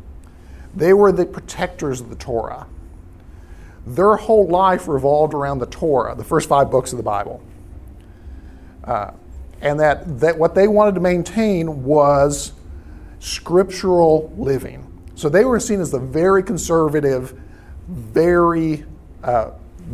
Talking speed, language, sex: 130 wpm, English, male